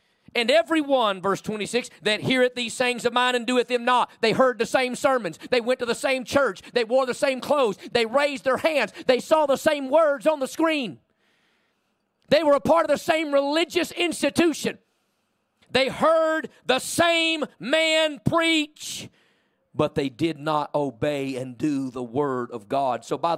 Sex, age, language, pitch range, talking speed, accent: male, 40-59, English, 195-280 Hz, 180 wpm, American